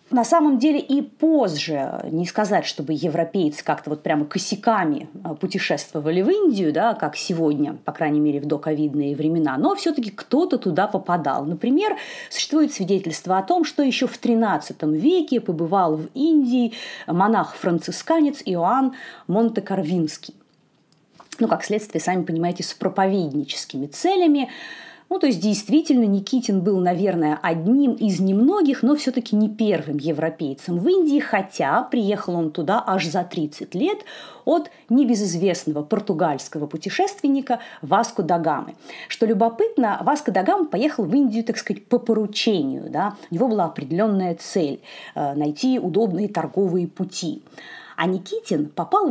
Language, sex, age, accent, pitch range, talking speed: Russian, female, 30-49, native, 170-270 Hz, 130 wpm